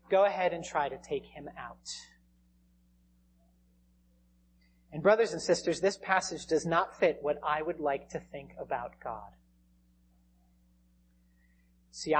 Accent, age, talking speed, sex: American, 40-59, 130 wpm, male